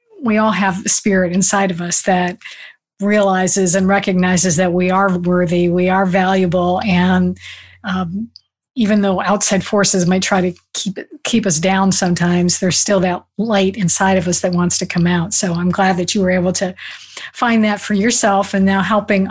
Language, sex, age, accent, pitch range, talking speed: English, female, 50-69, American, 185-235 Hz, 185 wpm